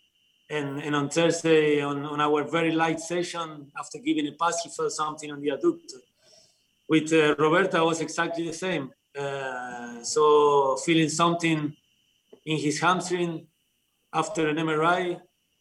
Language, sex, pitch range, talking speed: English, male, 145-170 Hz, 145 wpm